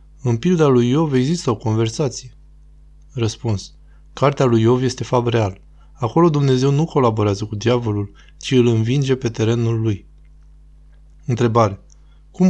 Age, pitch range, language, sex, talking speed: 20-39, 105-130 Hz, Romanian, male, 135 wpm